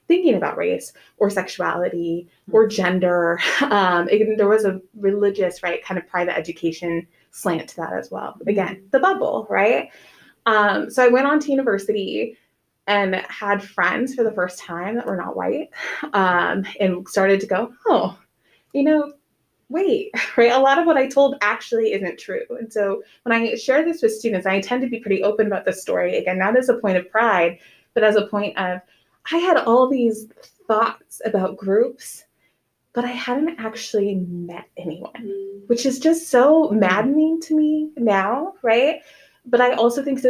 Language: English